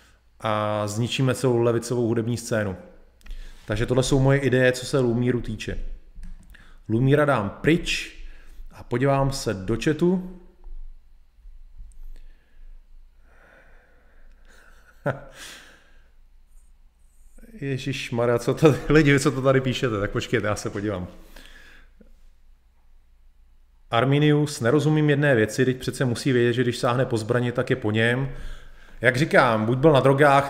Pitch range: 105-130 Hz